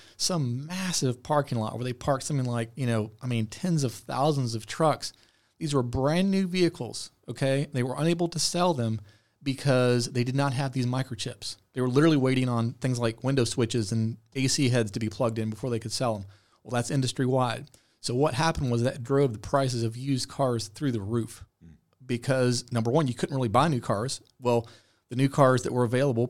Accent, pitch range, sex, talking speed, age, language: American, 115-135 Hz, male, 210 wpm, 30-49, English